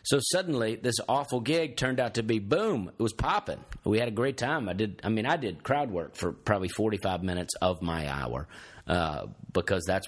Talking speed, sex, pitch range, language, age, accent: 215 wpm, male, 95-120 Hz, English, 40-59, American